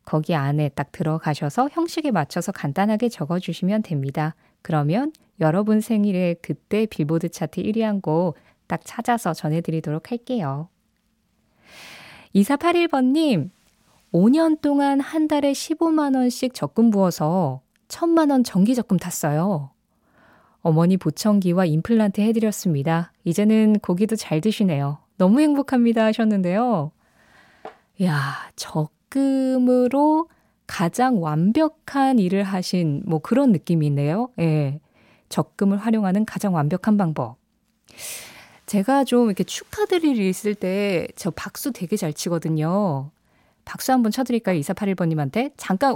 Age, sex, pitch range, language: 20-39, female, 170-255 Hz, Korean